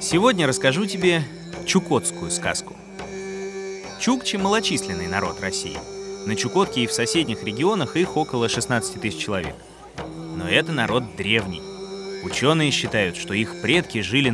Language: Russian